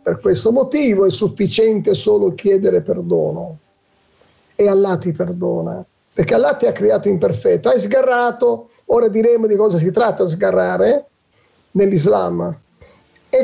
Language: Italian